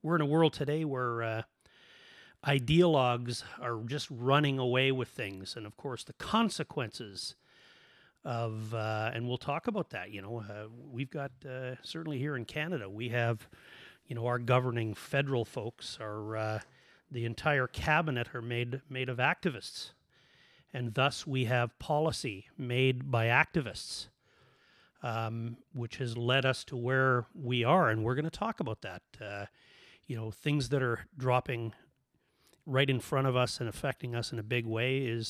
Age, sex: 40-59, male